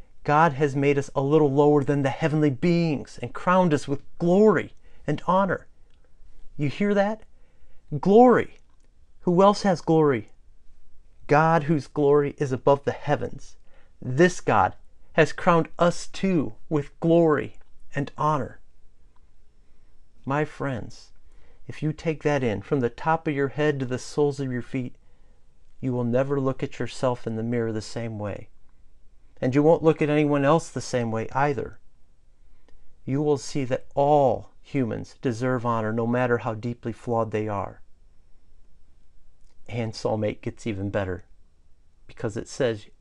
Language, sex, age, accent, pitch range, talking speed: English, male, 40-59, American, 90-145 Hz, 150 wpm